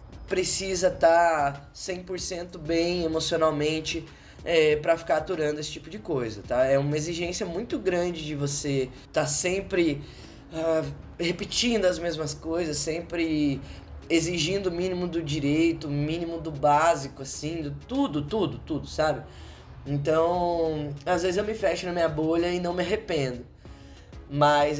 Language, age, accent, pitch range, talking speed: Portuguese, 10-29, Brazilian, 125-165 Hz, 145 wpm